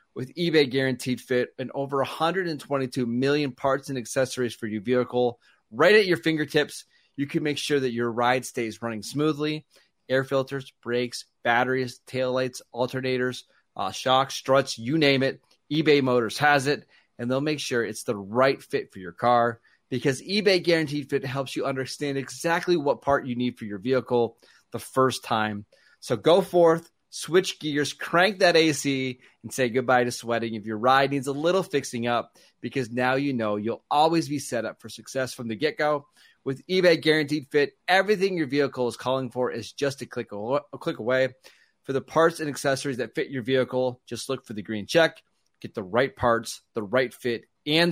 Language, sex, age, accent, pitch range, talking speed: English, male, 30-49, American, 120-145 Hz, 185 wpm